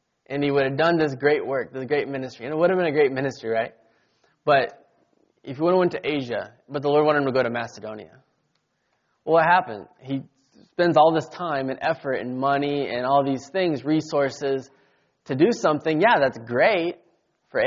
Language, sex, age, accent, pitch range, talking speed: English, male, 20-39, American, 135-165 Hz, 205 wpm